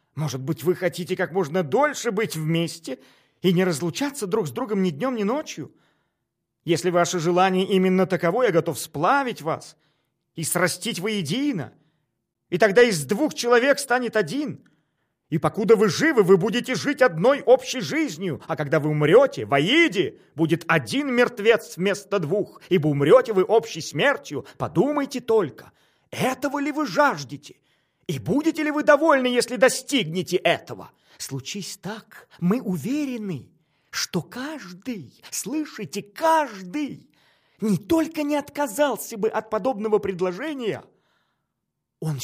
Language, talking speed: Russian, 135 wpm